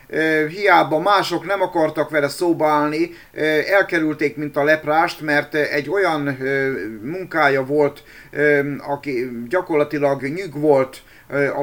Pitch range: 140-160 Hz